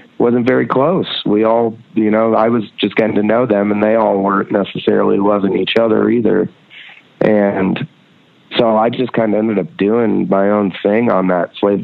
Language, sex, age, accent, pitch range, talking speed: English, male, 30-49, American, 100-115 Hz, 195 wpm